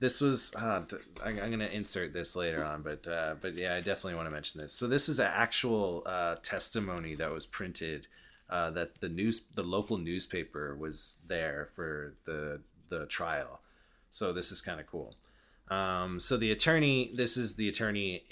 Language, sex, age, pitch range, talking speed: English, male, 30-49, 95-115 Hz, 185 wpm